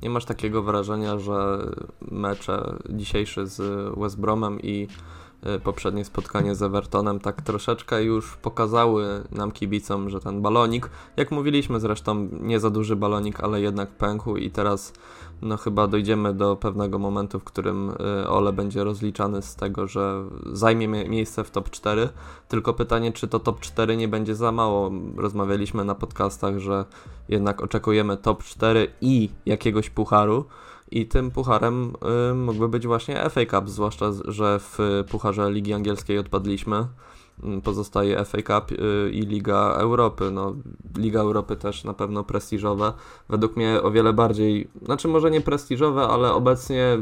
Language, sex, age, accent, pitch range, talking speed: Polish, male, 20-39, native, 100-115 Hz, 145 wpm